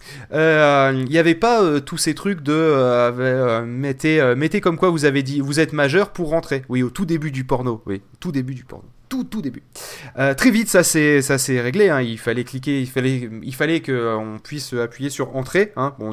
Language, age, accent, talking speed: French, 30-49, French, 230 wpm